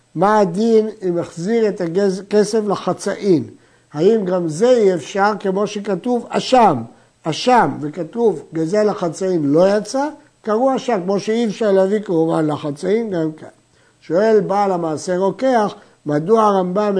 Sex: male